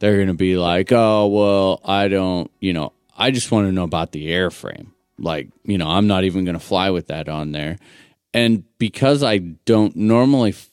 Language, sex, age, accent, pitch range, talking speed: English, male, 30-49, American, 90-115 Hz, 205 wpm